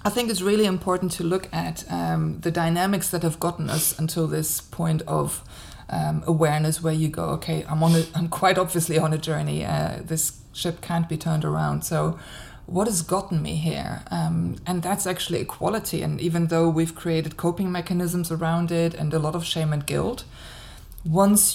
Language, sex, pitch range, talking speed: English, female, 155-180 Hz, 190 wpm